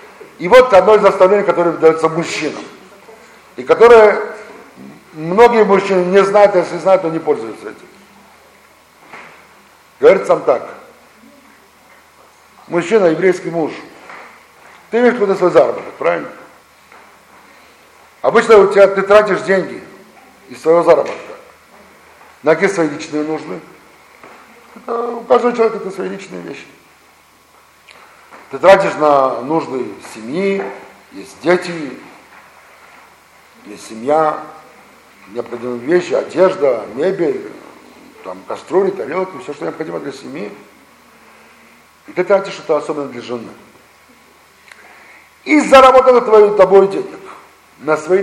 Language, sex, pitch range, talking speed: Russian, male, 160-220 Hz, 110 wpm